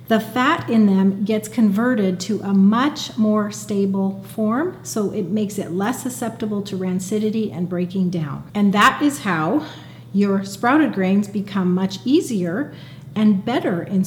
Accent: American